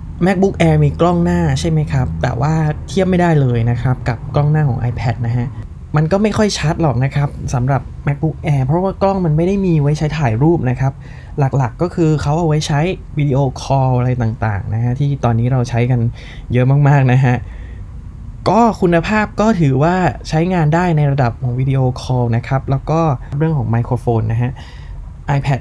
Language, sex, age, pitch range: Thai, male, 20-39, 125-165 Hz